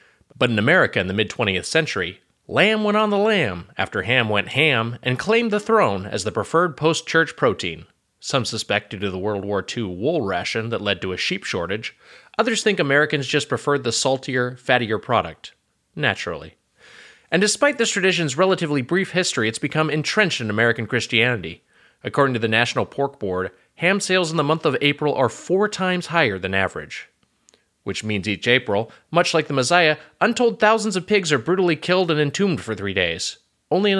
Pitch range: 115-185 Hz